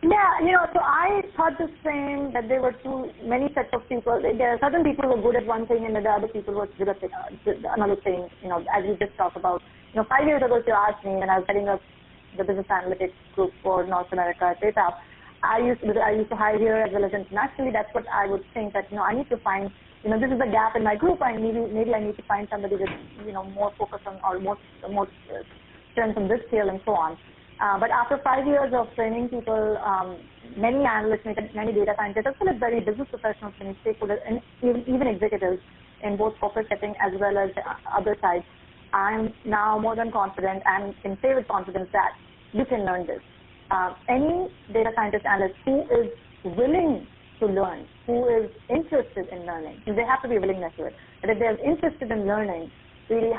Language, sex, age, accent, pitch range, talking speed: English, female, 30-49, Indian, 200-240 Hz, 225 wpm